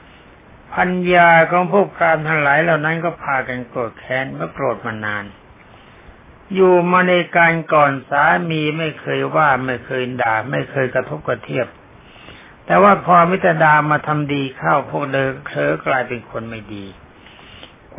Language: Thai